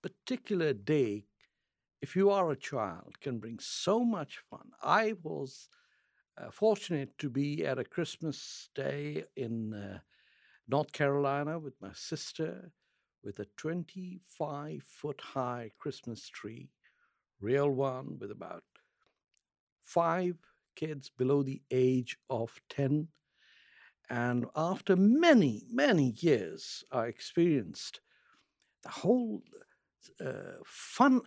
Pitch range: 130-220 Hz